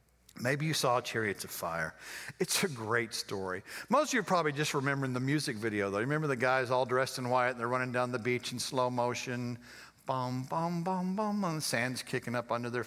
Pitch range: 125-175 Hz